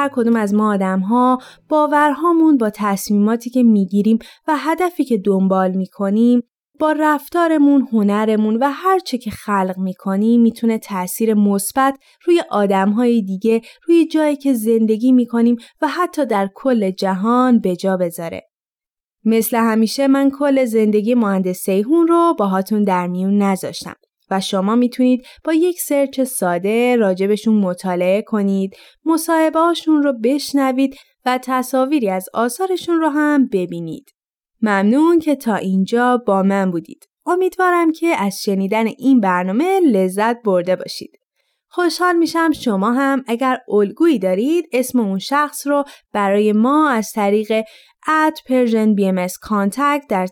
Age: 20-39